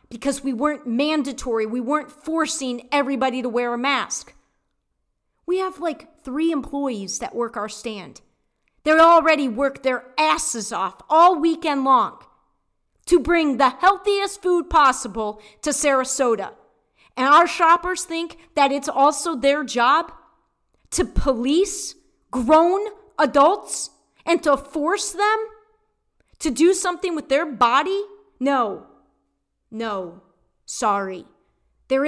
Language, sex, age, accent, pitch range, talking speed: English, female, 40-59, American, 255-335 Hz, 125 wpm